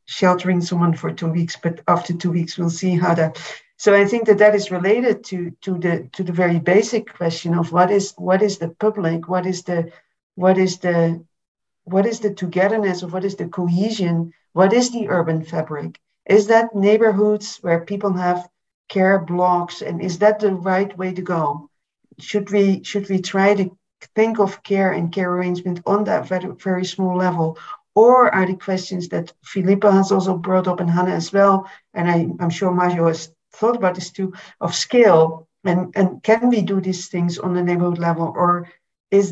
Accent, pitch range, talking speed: Dutch, 175-195 Hz, 195 wpm